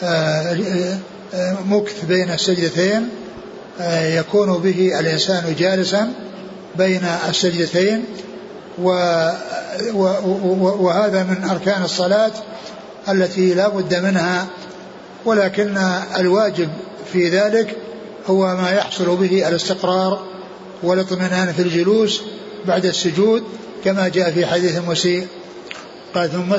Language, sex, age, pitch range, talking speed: Arabic, male, 60-79, 180-205 Hz, 85 wpm